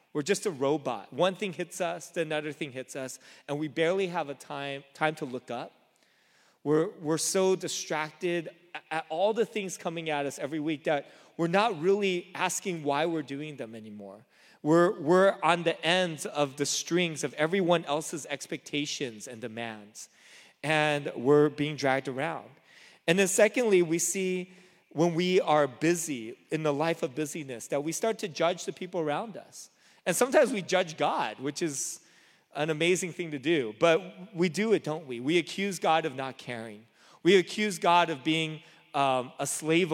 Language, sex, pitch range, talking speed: English, male, 145-180 Hz, 180 wpm